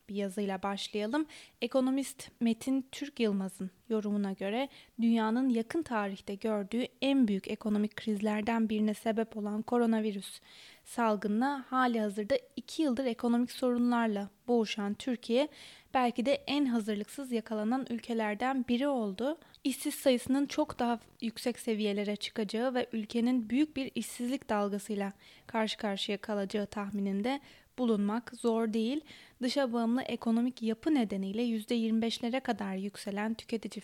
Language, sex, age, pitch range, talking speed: Turkish, female, 20-39, 210-260 Hz, 120 wpm